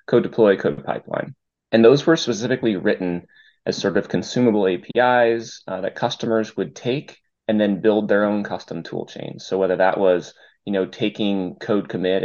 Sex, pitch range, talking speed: male, 95-115 Hz, 175 wpm